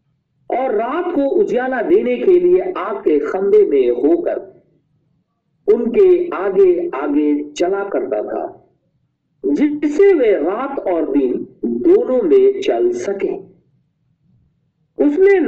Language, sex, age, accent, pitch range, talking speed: Hindi, male, 50-69, native, 240-395 Hz, 105 wpm